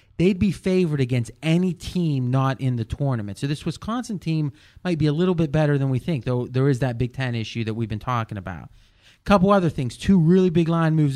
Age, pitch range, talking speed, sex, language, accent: 30-49, 125-155 Hz, 235 wpm, male, English, American